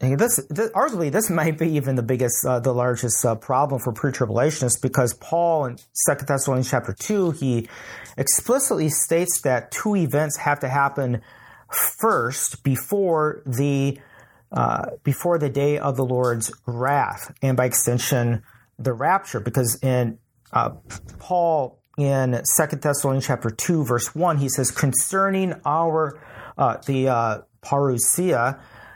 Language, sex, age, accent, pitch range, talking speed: English, male, 40-59, American, 125-155 Hz, 140 wpm